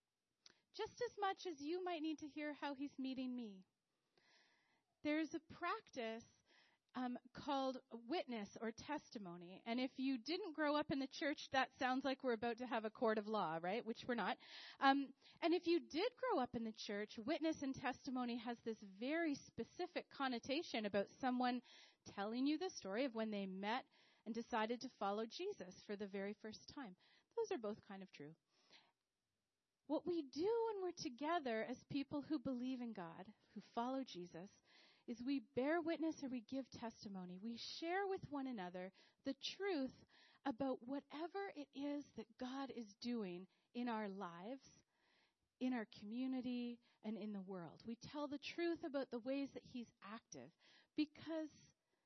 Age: 30-49